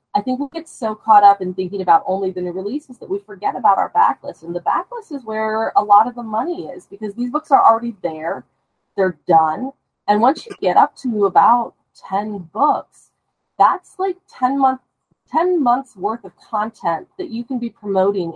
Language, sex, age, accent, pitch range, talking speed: English, female, 30-49, American, 180-250 Hz, 200 wpm